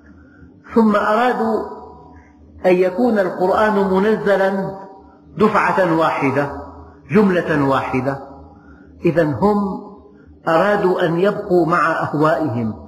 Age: 50-69